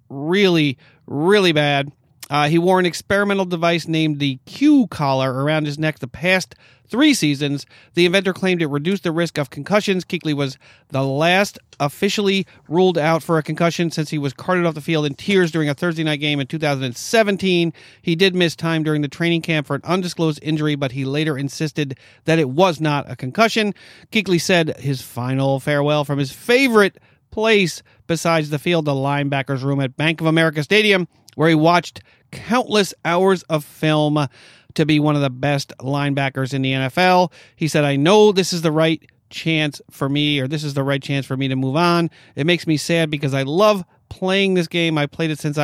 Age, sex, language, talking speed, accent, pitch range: 40-59, male, English, 195 wpm, American, 140-175 Hz